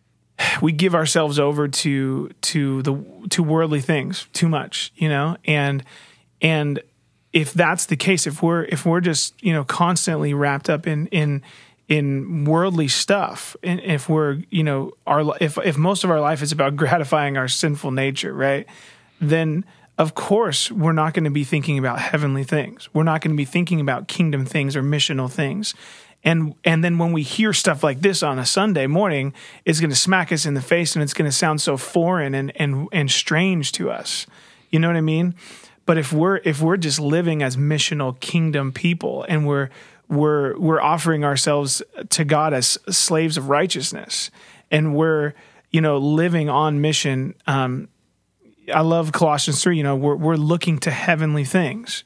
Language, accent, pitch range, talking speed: English, American, 145-170 Hz, 185 wpm